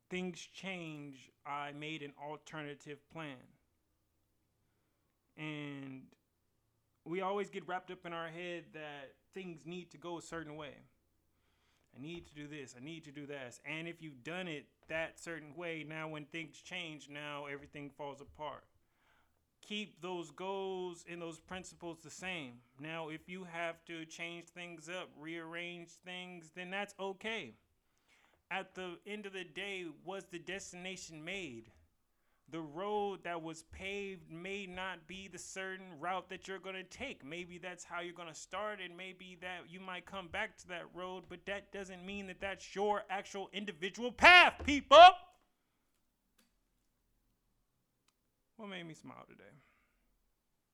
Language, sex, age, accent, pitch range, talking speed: English, male, 30-49, American, 145-185 Hz, 150 wpm